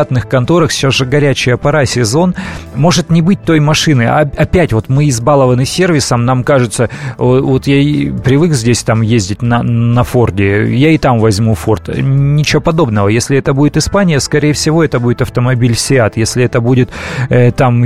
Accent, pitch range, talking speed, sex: native, 115-140 Hz, 160 wpm, male